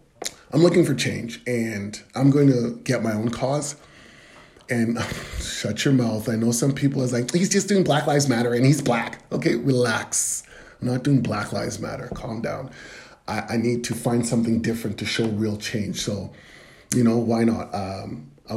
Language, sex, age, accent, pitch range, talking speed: English, male, 30-49, American, 110-140 Hz, 190 wpm